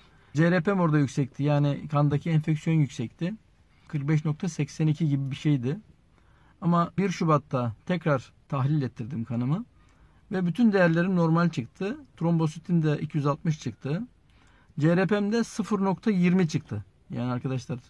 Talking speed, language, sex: 110 wpm, Turkish, male